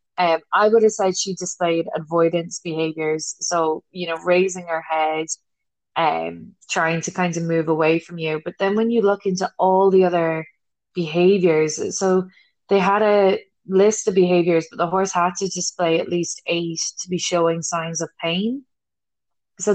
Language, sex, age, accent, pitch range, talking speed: English, female, 20-39, Irish, 160-190 Hz, 175 wpm